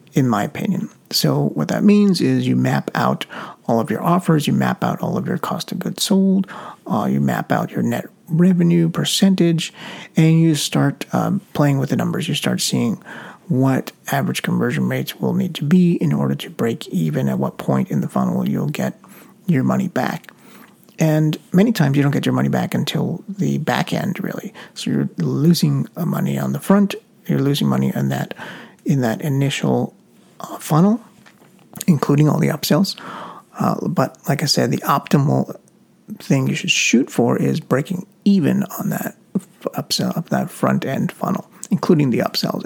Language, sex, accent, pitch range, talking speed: English, male, American, 140-200 Hz, 180 wpm